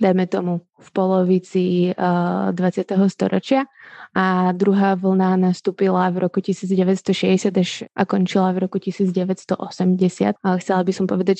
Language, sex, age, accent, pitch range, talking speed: Czech, female, 20-39, native, 185-200 Hz, 125 wpm